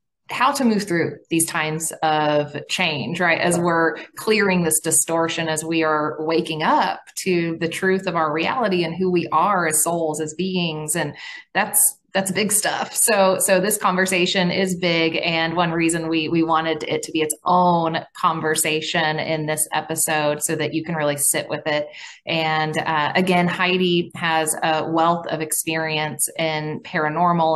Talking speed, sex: 170 wpm, female